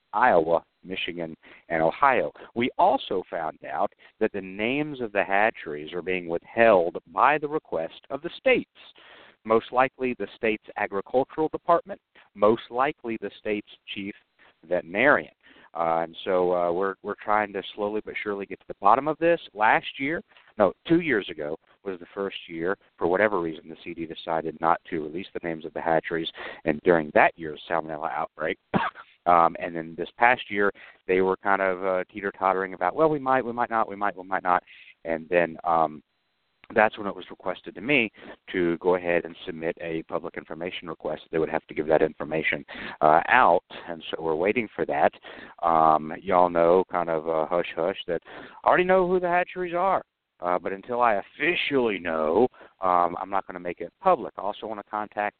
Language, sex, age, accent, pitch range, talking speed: English, male, 50-69, American, 90-130 Hz, 190 wpm